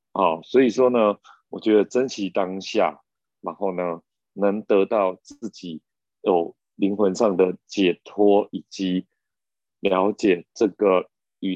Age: 30-49